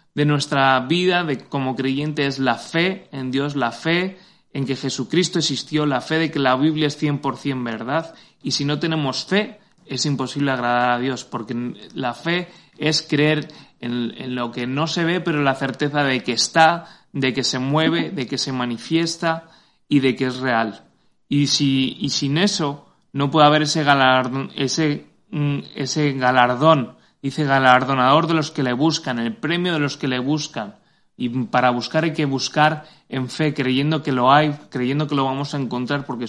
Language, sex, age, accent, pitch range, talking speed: Spanish, male, 30-49, Spanish, 130-155 Hz, 185 wpm